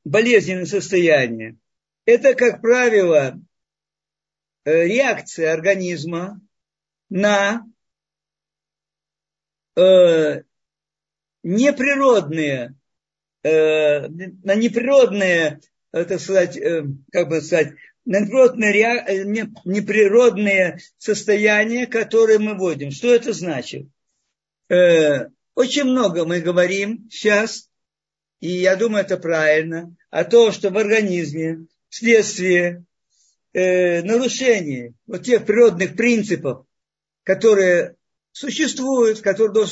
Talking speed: 80 wpm